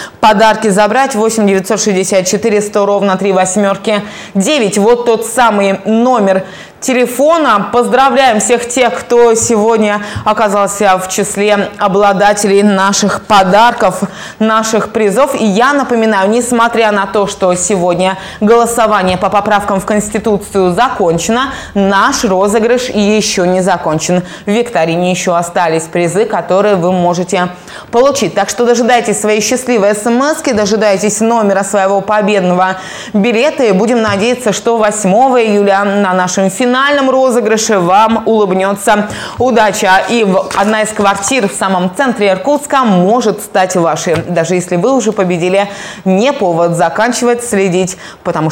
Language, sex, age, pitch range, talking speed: Russian, female, 20-39, 190-225 Hz, 125 wpm